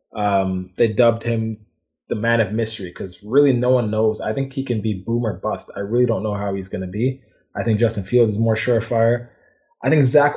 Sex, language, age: male, English, 20-39